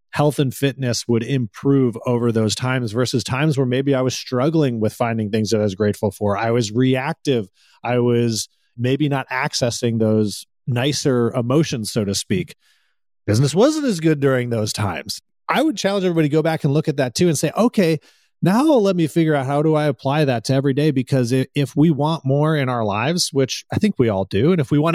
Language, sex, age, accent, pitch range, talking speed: English, male, 30-49, American, 115-145 Hz, 215 wpm